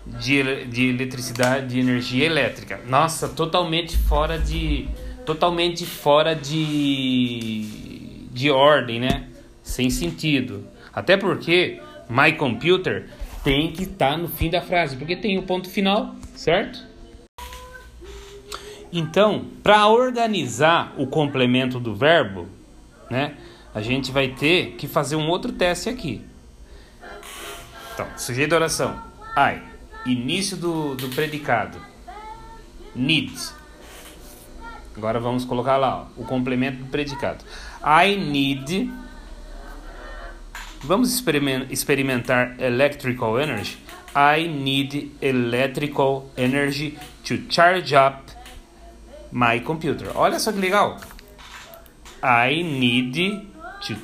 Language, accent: Portuguese, Brazilian